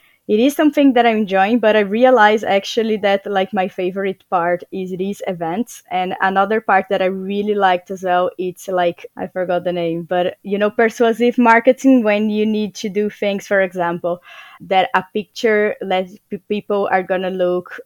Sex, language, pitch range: female, English, 180-210 Hz